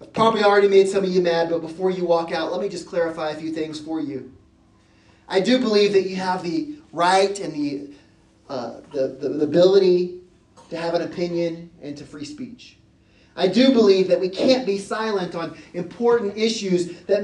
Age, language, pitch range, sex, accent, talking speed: 30-49, English, 175-230 Hz, male, American, 195 wpm